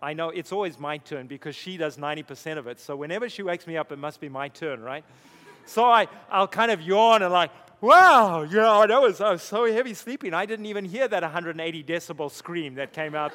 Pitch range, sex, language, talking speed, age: 155-210 Hz, male, English, 240 wpm, 30-49